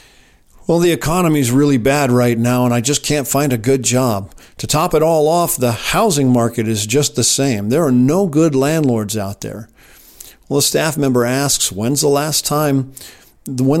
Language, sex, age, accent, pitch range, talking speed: English, male, 50-69, American, 115-145 Hz, 195 wpm